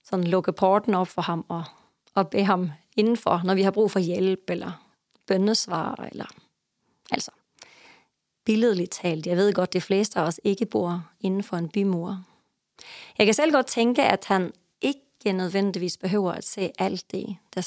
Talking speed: 175 wpm